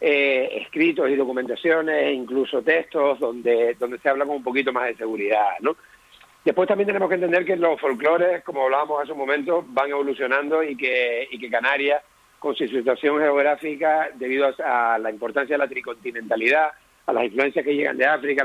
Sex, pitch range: male, 135-160 Hz